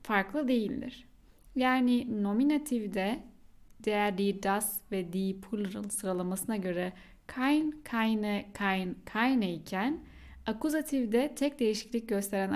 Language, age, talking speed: Turkish, 10-29, 100 wpm